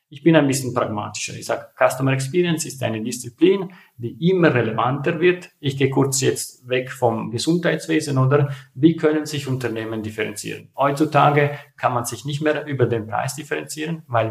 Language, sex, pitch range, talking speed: German, male, 115-145 Hz, 170 wpm